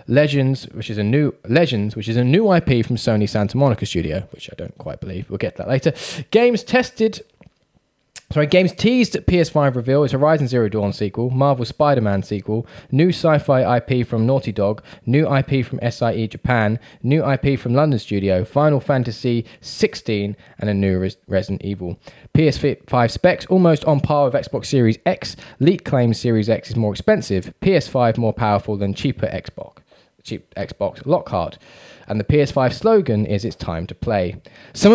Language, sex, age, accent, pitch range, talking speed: English, male, 10-29, British, 105-145 Hz, 170 wpm